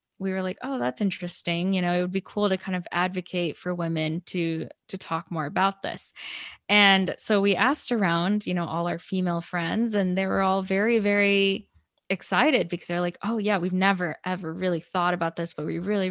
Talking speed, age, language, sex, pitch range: 210 wpm, 10-29, English, female, 175-200 Hz